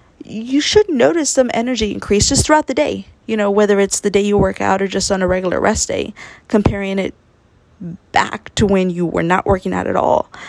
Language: English